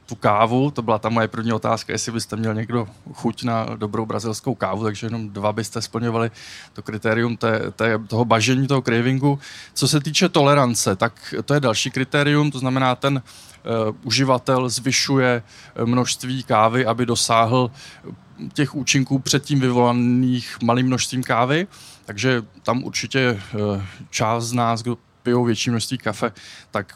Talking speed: 150 wpm